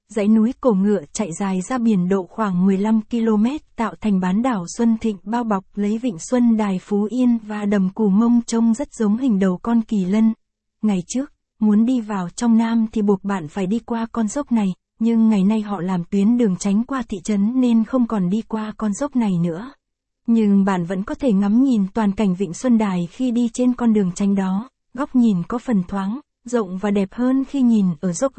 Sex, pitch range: female, 195-235 Hz